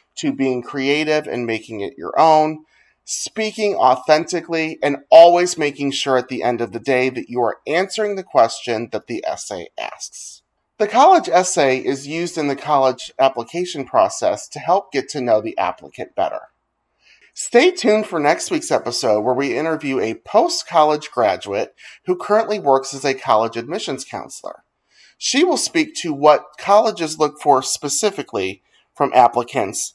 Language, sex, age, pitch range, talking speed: English, male, 30-49, 135-190 Hz, 160 wpm